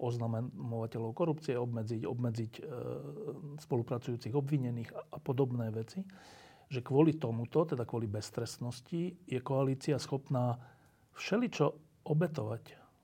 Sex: male